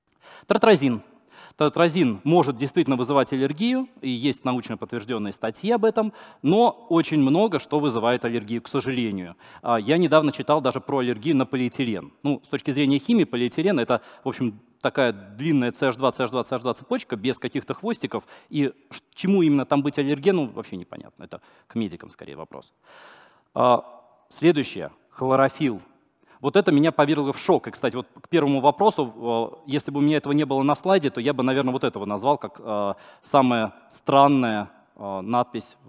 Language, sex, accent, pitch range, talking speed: Russian, male, native, 120-145 Hz, 155 wpm